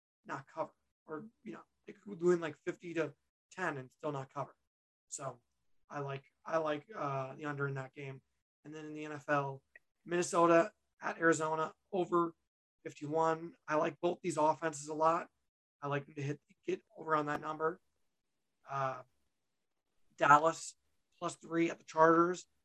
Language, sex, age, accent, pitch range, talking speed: English, male, 30-49, American, 140-165 Hz, 160 wpm